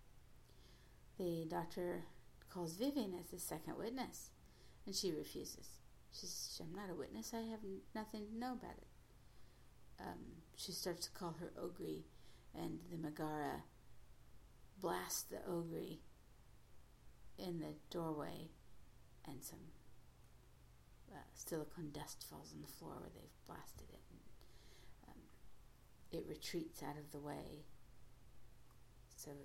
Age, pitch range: 60-79, 120-170 Hz